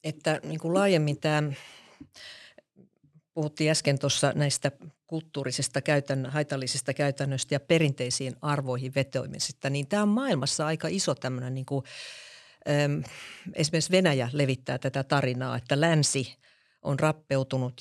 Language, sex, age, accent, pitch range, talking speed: Finnish, female, 50-69, native, 130-155 Hz, 120 wpm